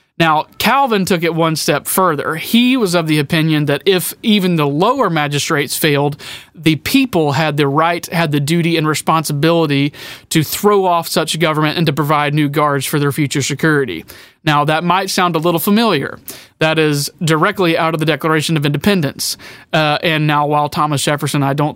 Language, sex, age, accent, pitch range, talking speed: English, male, 30-49, American, 145-175 Hz, 185 wpm